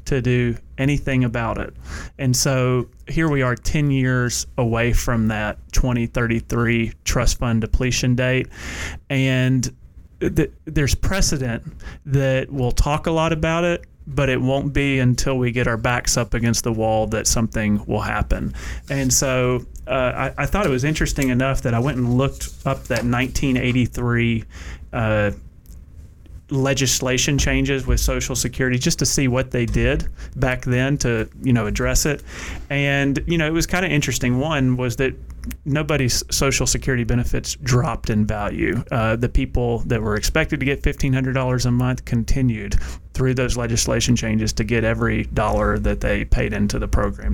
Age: 30-49